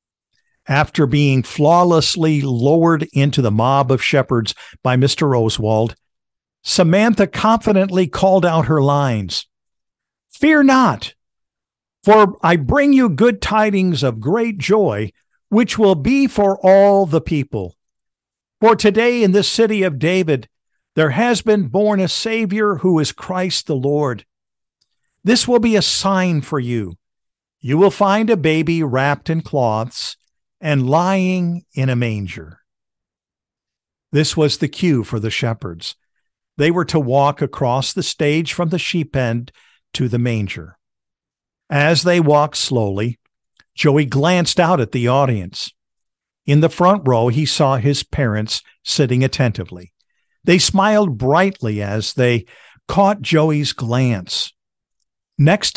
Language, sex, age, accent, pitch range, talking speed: English, male, 50-69, American, 125-190 Hz, 135 wpm